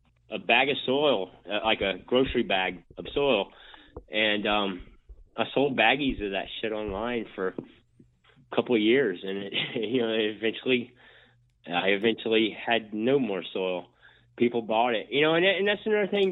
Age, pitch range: 30-49, 120-145 Hz